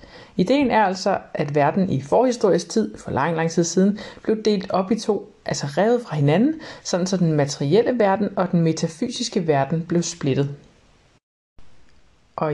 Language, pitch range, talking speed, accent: Danish, 155-200 Hz, 165 wpm, native